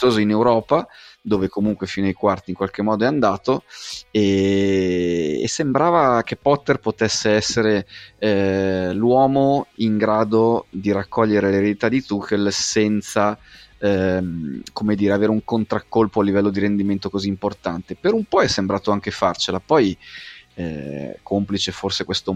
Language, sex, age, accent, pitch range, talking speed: Italian, male, 30-49, native, 100-115 Hz, 140 wpm